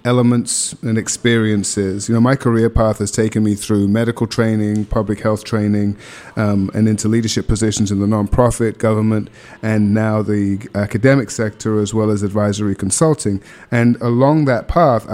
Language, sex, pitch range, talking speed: English, male, 105-120 Hz, 160 wpm